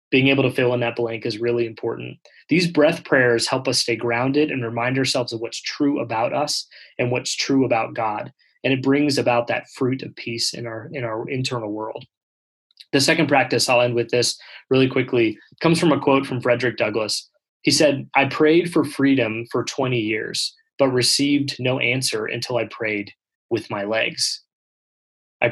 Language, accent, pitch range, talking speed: English, American, 115-140 Hz, 185 wpm